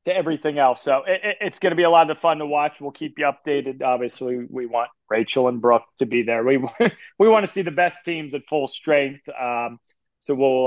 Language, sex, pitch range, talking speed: English, male, 135-175 Hz, 235 wpm